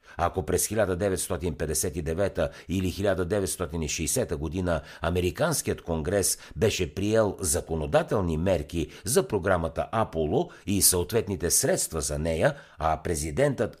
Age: 60-79